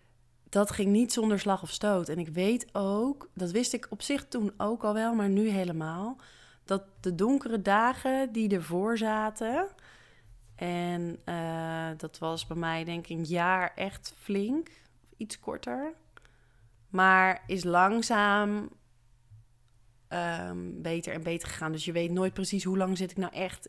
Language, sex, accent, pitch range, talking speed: Dutch, female, Dutch, 150-205 Hz, 160 wpm